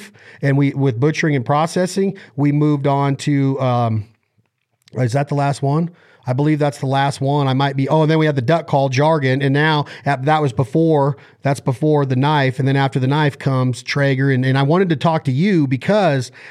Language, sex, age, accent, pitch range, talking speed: English, male, 40-59, American, 135-160 Hz, 215 wpm